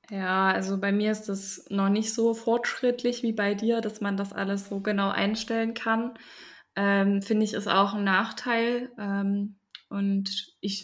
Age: 10-29